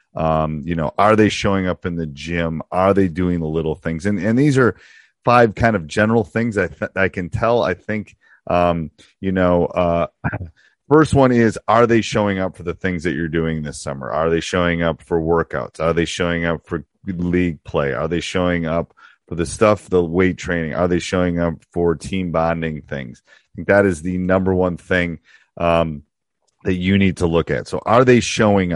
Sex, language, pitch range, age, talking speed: male, English, 85-100 Hz, 30-49, 210 wpm